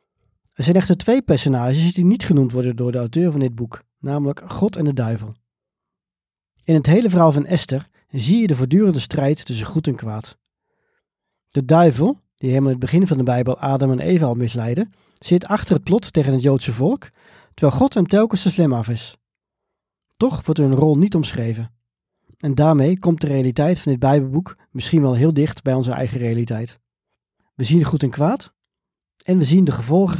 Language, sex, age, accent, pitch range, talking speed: Dutch, male, 40-59, Dutch, 125-170 Hz, 195 wpm